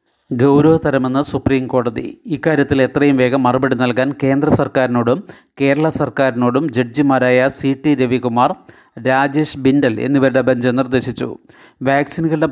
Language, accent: Malayalam, native